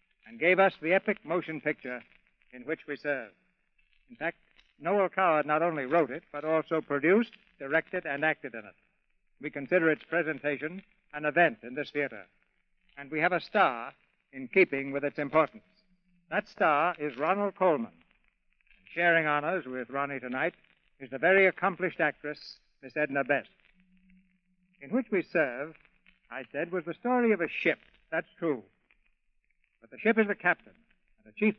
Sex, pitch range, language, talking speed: male, 145-185 Hz, English, 165 wpm